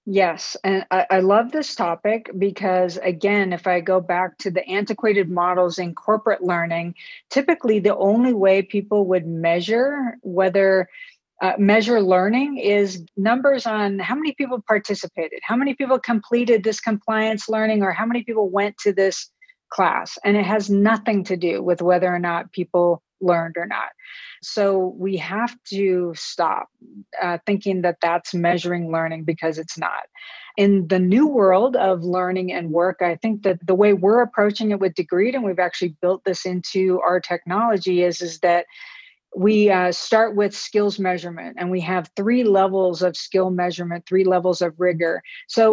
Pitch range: 180-215 Hz